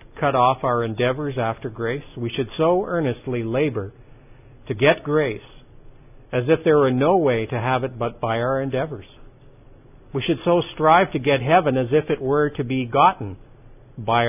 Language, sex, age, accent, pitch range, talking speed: English, male, 50-69, American, 120-140 Hz, 175 wpm